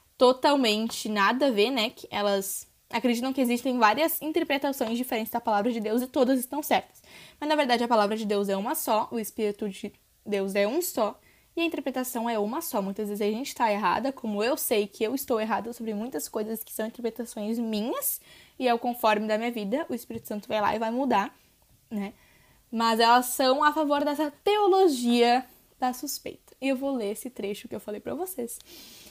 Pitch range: 220-285 Hz